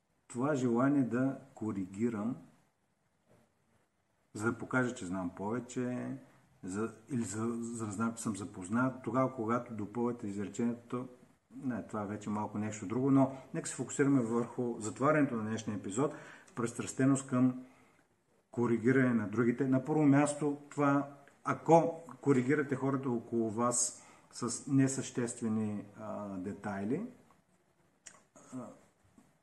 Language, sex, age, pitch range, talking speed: Bulgarian, male, 50-69, 110-130 Hz, 120 wpm